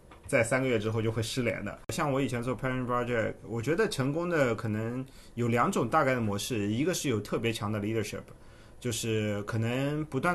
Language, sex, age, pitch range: Chinese, male, 20-39, 100-120 Hz